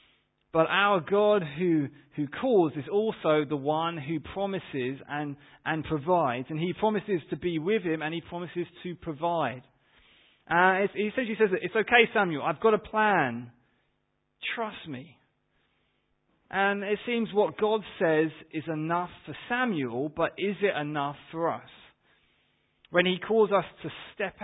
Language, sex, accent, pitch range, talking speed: English, male, British, 155-200 Hz, 155 wpm